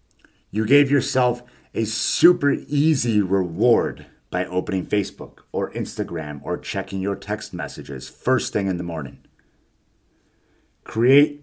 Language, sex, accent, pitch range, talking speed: English, male, American, 95-135 Hz, 120 wpm